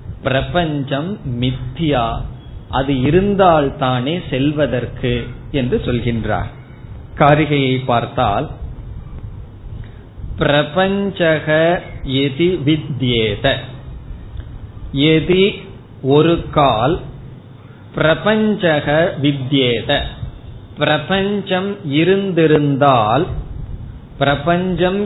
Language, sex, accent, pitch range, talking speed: Tamil, male, native, 125-165 Hz, 45 wpm